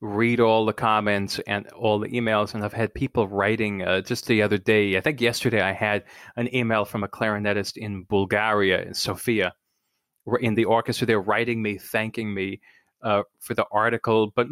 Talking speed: 185 wpm